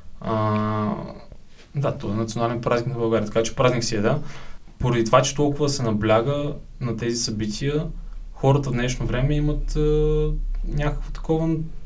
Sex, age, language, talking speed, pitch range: male, 20-39, Bulgarian, 155 wpm, 110-140 Hz